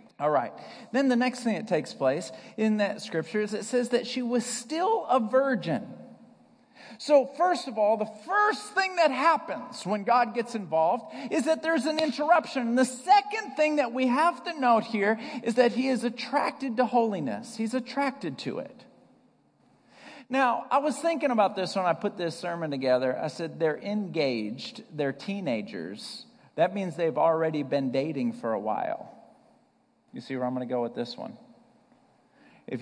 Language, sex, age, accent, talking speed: English, male, 40-59, American, 175 wpm